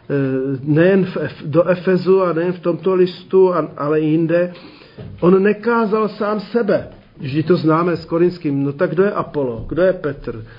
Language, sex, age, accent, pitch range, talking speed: Czech, male, 40-59, native, 145-180 Hz, 160 wpm